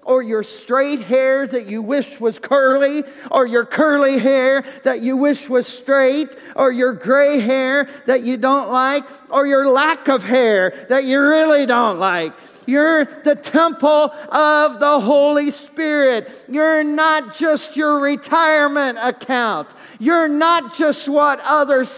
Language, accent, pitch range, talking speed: English, American, 270-325 Hz, 145 wpm